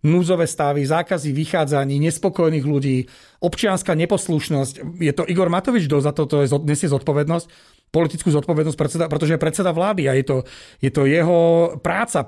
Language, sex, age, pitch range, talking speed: Slovak, male, 40-59, 140-170 Hz, 160 wpm